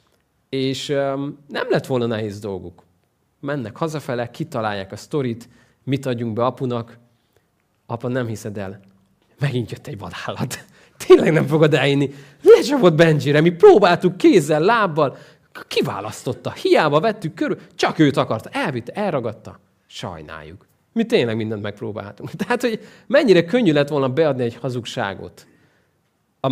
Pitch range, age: 110-150 Hz, 30-49